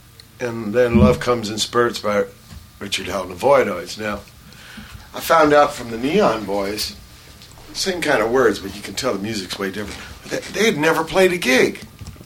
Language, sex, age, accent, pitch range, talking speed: English, male, 60-79, American, 100-125 Hz, 185 wpm